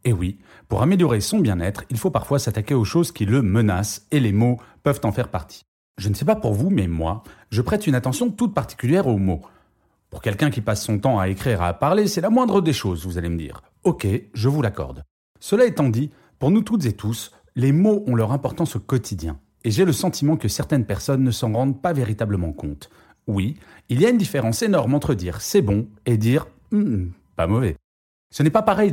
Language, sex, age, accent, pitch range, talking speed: French, male, 40-59, French, 105-150 Hz, 230 wpm